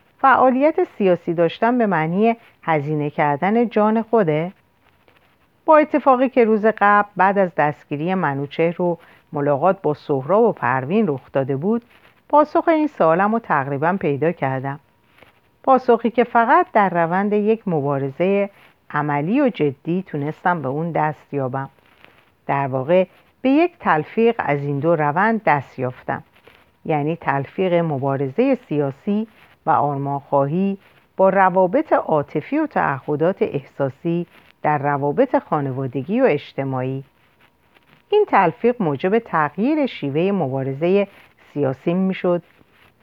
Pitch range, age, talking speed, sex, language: 145-225 Hz, 50-69, 120 wpm, female, Persian